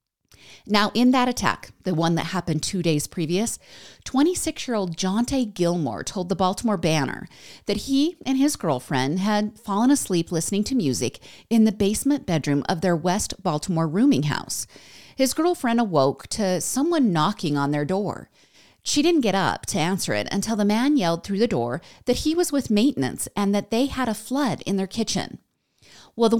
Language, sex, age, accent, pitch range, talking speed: English, female, 40-59, American, 170-240 Hz, 175 wpm